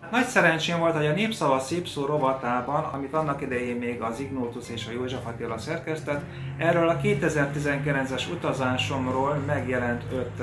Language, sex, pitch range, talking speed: Hungarian, male, 120-150 Hz, 150 wpm